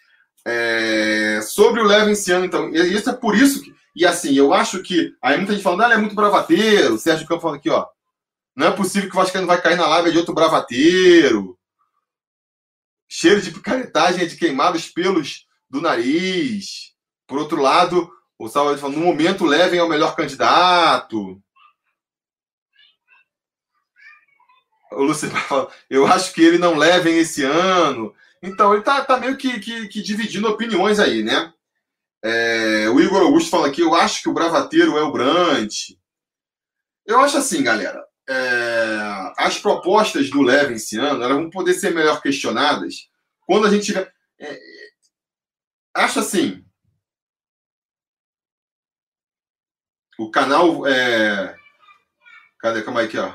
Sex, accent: male, Brazilian